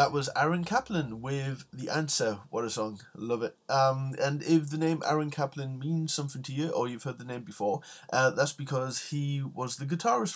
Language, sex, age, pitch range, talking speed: English, male, 20-39, 120-150 Hz, 210 wpm